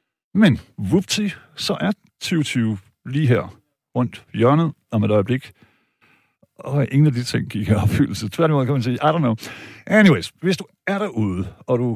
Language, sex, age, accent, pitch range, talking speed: Danish, male, 60-79, native, 105-135 Hz, 175 wpm